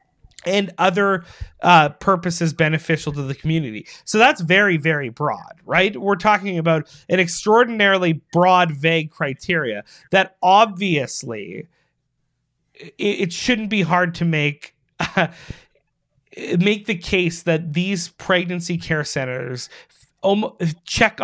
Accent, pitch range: American, 150-190 Hz